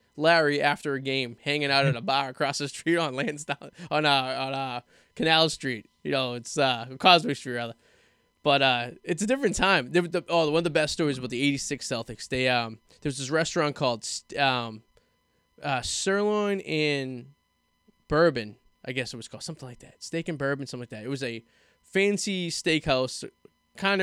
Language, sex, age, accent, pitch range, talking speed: English, male, 10-29, American, 130-165 Hz, 185 wpm